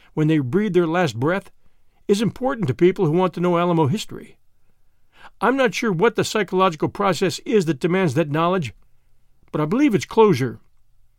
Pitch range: 140-200 Hz